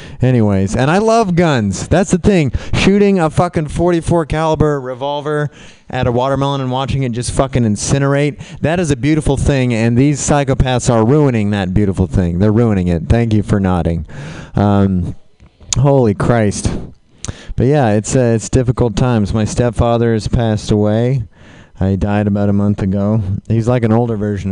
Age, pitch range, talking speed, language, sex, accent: 30-49, 95-125 Hz, 170 wpm, English, male, American